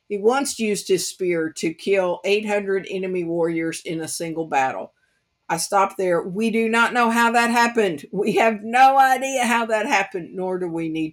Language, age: English, 50-69